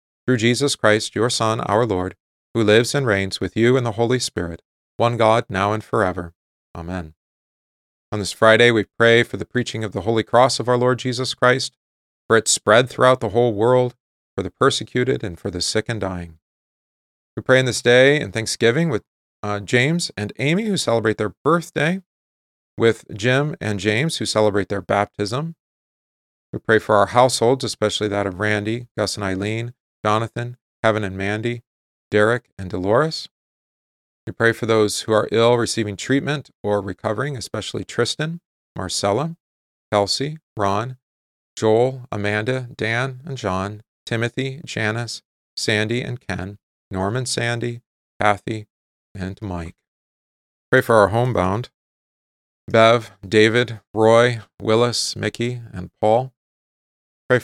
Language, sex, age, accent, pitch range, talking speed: English, male, 40-59, American, 100-125 Hz, 150 wpm